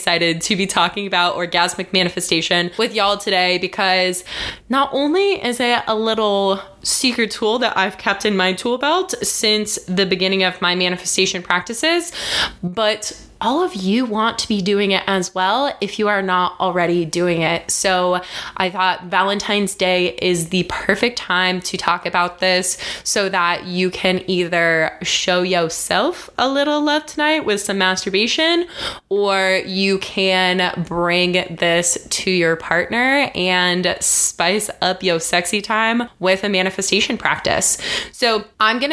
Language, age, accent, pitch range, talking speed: English, 20-39, American, 175-210 Hz, 155 wpm